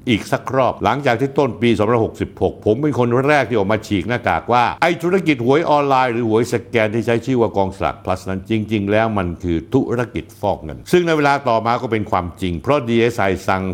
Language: Thai